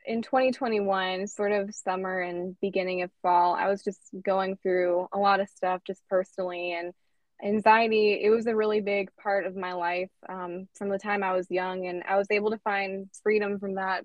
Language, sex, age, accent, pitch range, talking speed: English, female, 20-39, American, 180-205 Hz, 200 wpm